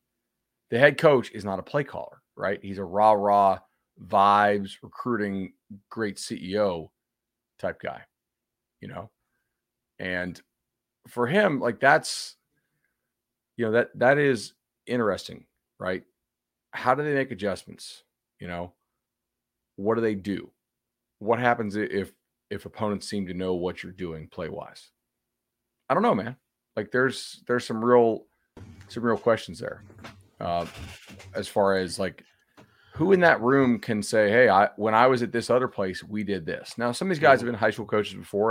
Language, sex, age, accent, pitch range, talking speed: English, male, 40-59, American, 95-120 Hz, 160 wpm